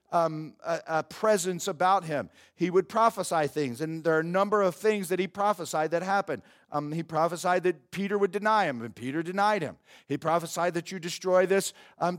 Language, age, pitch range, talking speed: English, 50-69, 170-205 Hz, 200 wpm